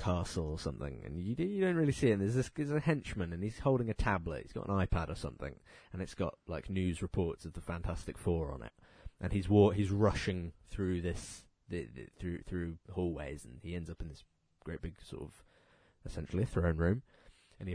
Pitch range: 85-110 Hz